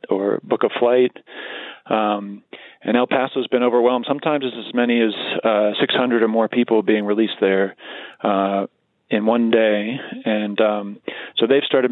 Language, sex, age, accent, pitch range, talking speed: English, male, 30-49, American, 105-125 Hz, 165 wpm